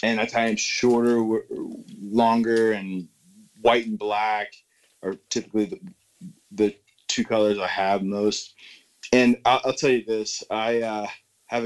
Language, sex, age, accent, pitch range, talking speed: English, male, 20-39, American, 105-140 Hz, 145 wpm